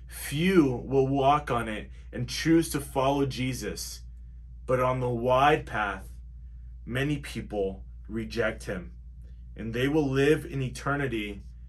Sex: male